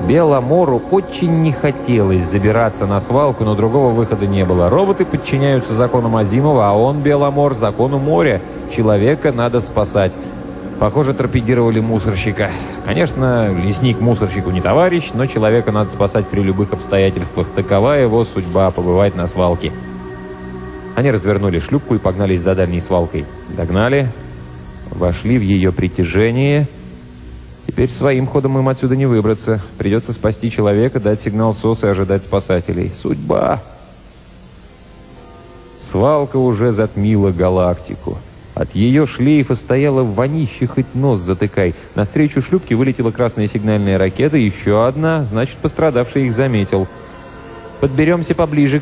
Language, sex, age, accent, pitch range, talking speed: Russian, male, 30-49, native, 95-130 Hz, 125 wpm